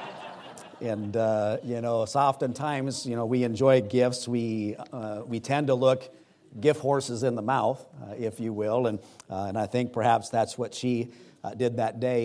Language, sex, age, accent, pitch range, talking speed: English, male, 50-69, American, 115-130 Hz, 190 wpm